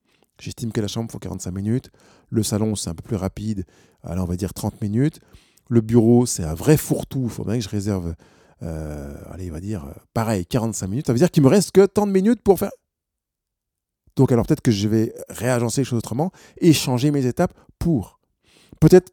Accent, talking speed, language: French, 215 wpm, French